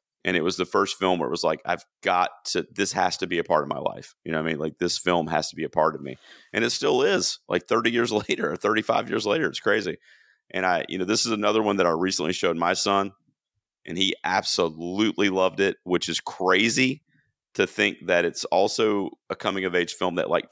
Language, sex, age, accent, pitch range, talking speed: English, male, 30-49, American, 85-110 Hz, 245 wpm